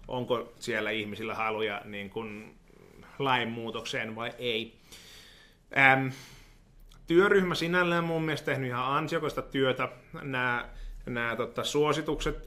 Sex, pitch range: male, 120-145 Hz